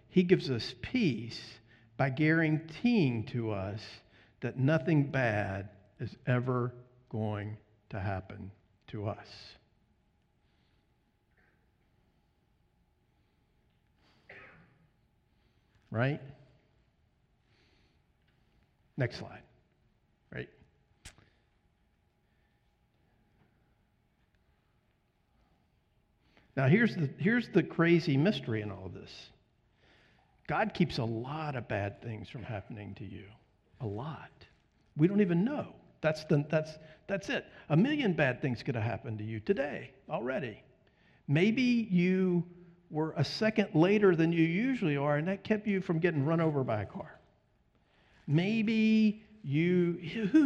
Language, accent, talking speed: English, American, 105 wpm